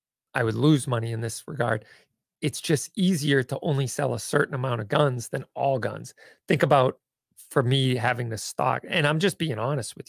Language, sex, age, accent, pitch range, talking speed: English, male, 40-59, American, 120-155 Hz, 200 wpm